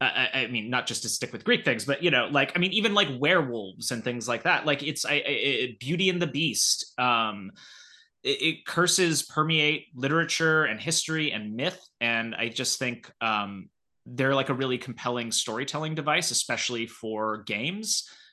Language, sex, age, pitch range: English, male, 20-39, 115-160 Hz